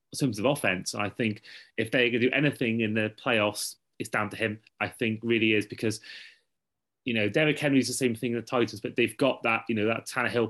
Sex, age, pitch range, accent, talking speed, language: male, 30-49, 110-130 Hz, British, 245 wpm, English